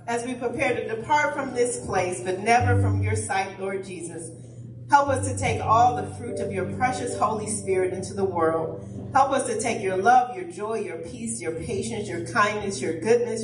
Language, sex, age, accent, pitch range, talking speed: English, female, 40-59, American, 175-240 Hz, 205 wpm